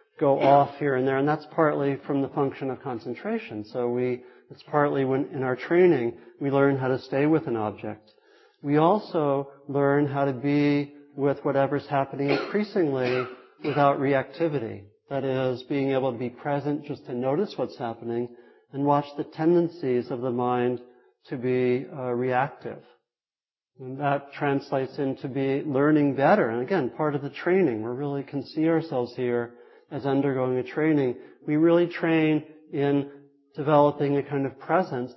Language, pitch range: English, 125-150 Hz